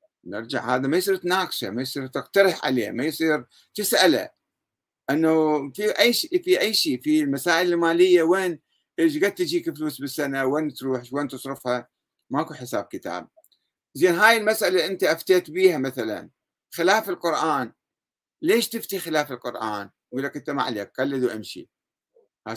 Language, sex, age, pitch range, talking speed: Arabic, male, 60-79, 130-190 Hz, 150 wpm